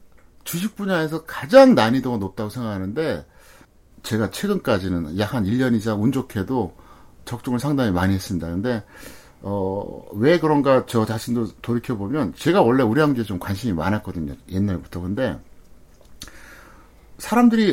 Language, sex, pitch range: Korean, male, 100-165 Hz